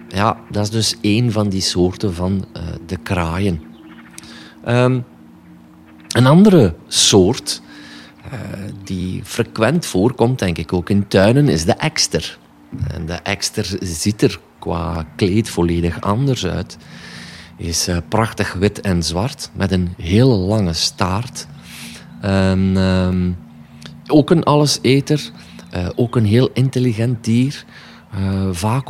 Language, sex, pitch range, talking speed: Dutch, male, 90-115 Hz, 130 wpm